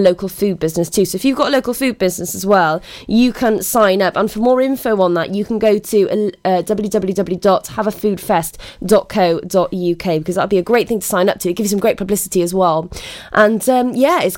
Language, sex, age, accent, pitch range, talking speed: English, female, 20-39, British, 180-235 Hz, 215 wpm